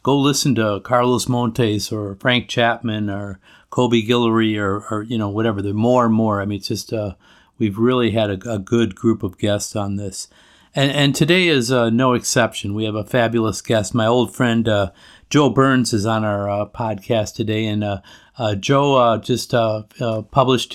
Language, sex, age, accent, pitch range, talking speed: English, male, 50-69, American, 110-125 Hz, 200 wpm